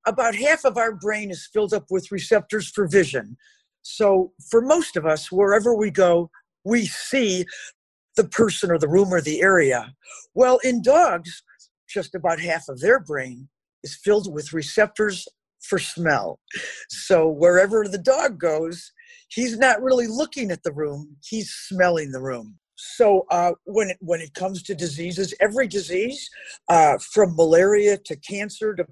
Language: English